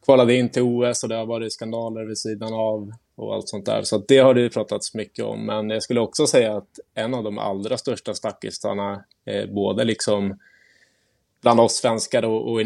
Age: 20-39